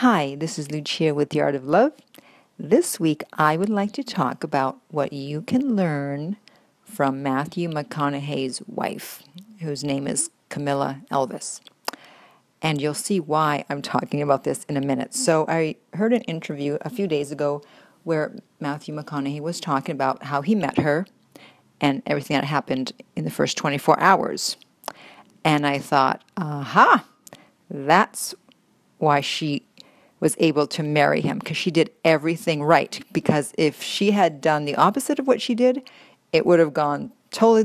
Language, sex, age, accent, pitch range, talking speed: English, female, 50-69, American, 145-195 Hz, 165 wpm